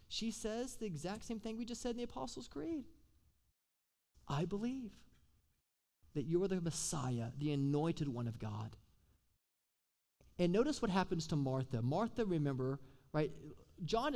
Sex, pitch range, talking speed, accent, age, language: male, 125-180 Hz, 150 wpm, American, 30-49, English